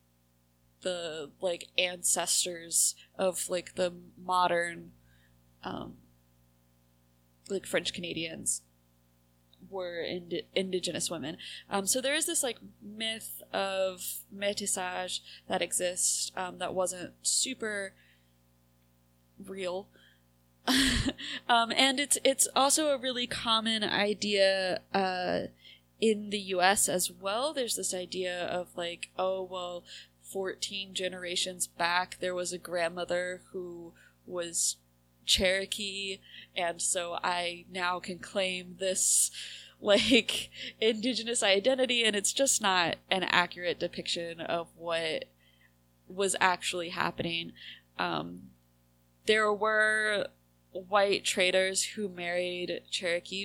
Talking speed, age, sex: 105 wpm, 20-39, female